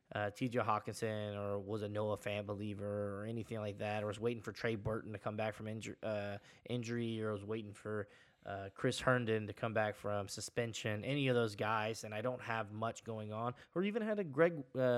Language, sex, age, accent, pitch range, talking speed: English, male, 20-39, American, 105-125 Hz, 215 wpm